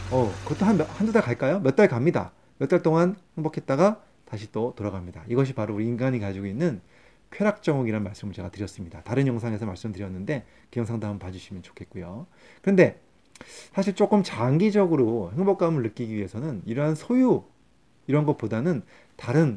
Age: 30-49